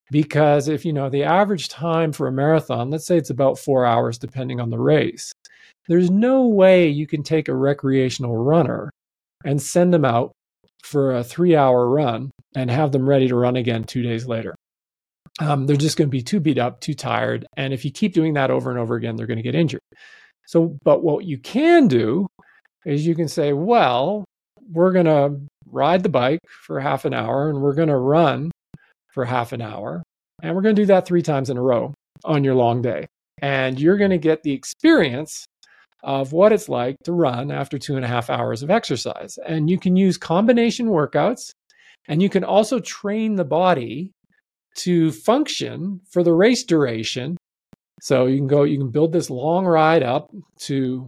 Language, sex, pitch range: English, male, 130-175 Hz